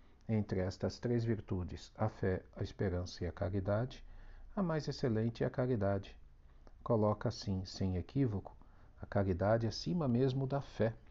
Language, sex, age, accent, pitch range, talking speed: Portuguese, male, 50-69, Brazilian, 95-120 Hz, 145 wpm